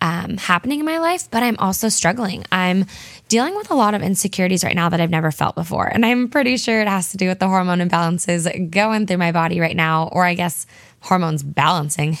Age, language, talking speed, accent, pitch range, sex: 10-29, English, 225 wpm, American, 165-205 Hz, female